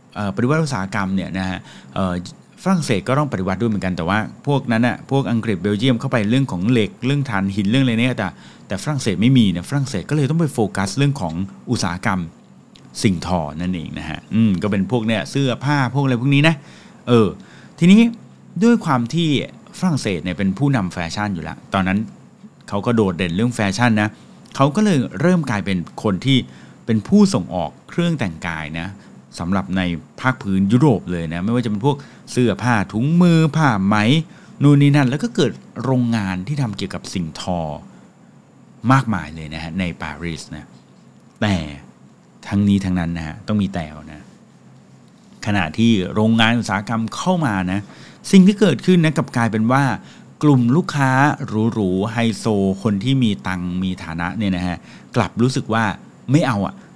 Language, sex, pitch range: English, male, 95-135 Hz